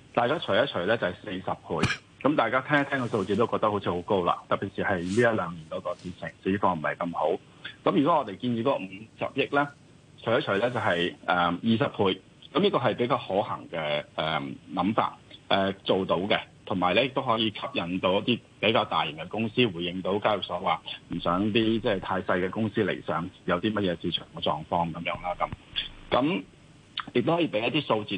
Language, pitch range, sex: Chinese, 90-120 Hz, male